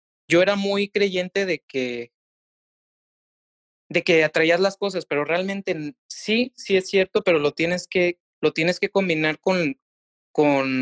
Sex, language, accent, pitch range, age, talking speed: male, Spanish, Mexican, 145-185 Hz, 20-39, 150 wpm